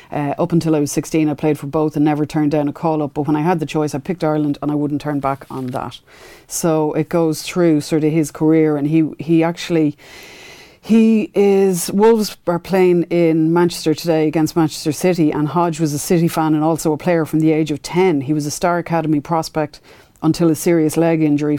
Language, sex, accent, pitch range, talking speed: English, female, Irish, 150-165 Hz, 225 wpm